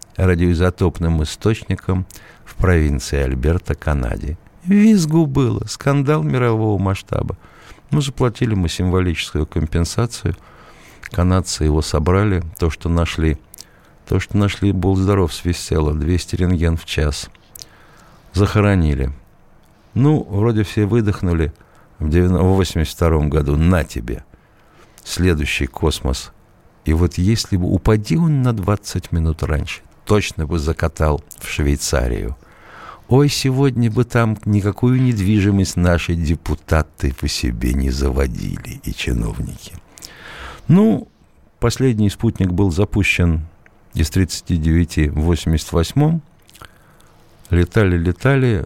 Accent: native